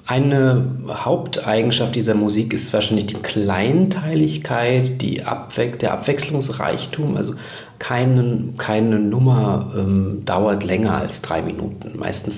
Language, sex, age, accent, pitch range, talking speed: German, male, 40-59, German, 100-115 Hz, 110 wpm